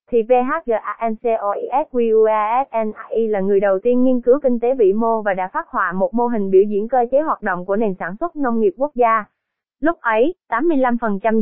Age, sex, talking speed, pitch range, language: 20-39, female, 190 wpm, 205-250 Hz, Vietnamese